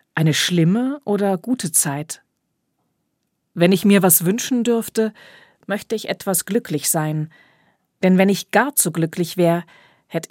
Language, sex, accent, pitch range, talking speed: German, female, German, 155-200 Hz, 140 wpm